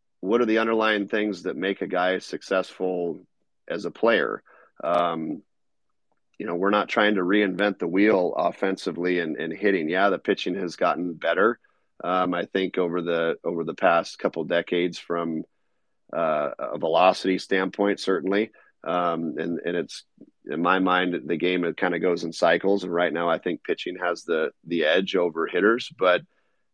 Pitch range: 90-100 Hz